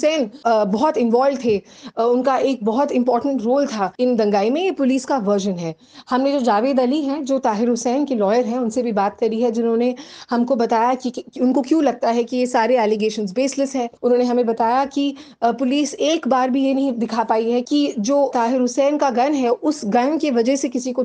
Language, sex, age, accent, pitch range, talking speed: Hindi, female, 30-49, native, 230-275 Hz, 210 wpm